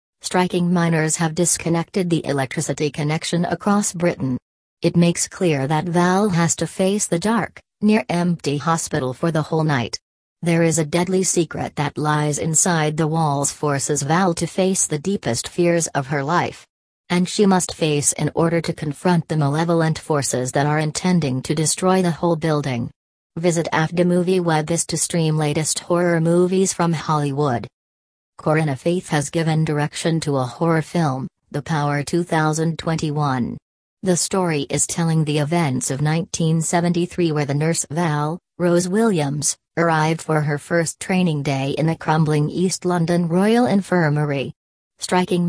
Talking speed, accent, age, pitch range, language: 150 wpm, American, 40-59, 150-175 Hz, English